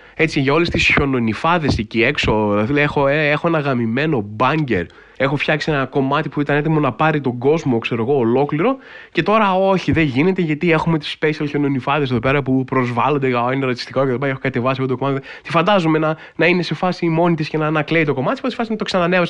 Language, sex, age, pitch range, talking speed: Greek, male, 20-39, 135-180 Hz, 220 wpm